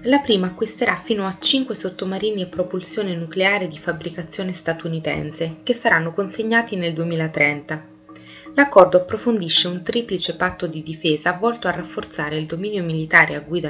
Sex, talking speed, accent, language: female, 145 wpm, native, Italian